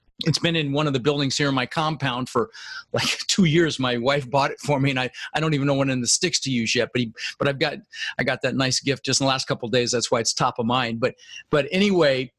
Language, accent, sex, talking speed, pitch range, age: English, American, male, 290 wpm, 135-185 Hz, 40-59